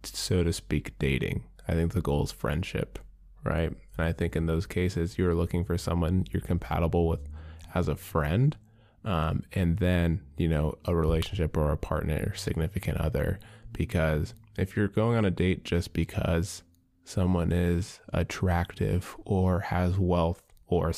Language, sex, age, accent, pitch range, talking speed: English, male, 20-39, American, 85-95 Hz, 160 wpm